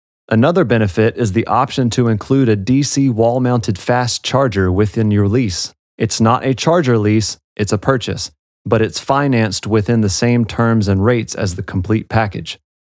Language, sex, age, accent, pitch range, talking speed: English, male, 30-49, American, 100-125 Hz, 170 wpm